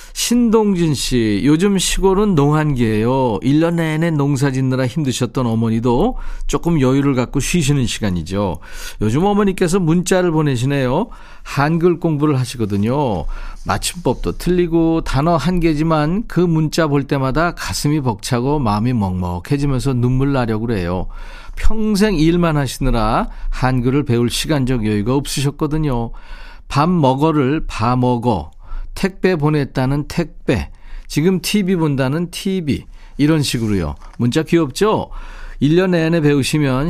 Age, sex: 40-59, male